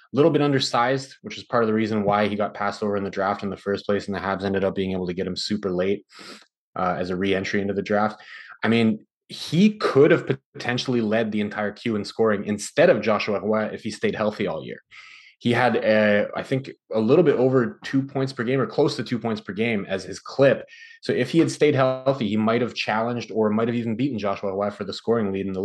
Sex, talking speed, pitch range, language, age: male, 245 wpm, 100-120 Hz, English, 20-39